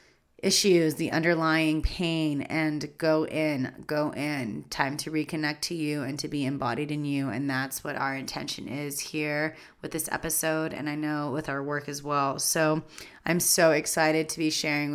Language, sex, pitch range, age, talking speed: English, female, 155-190 Hz, 30-49, 180 wpm